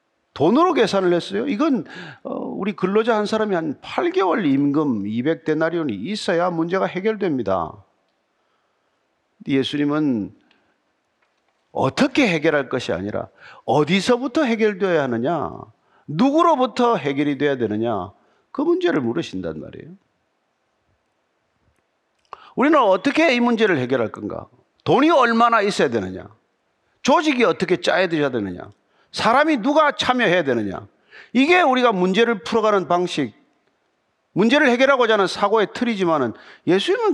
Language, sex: Korean, male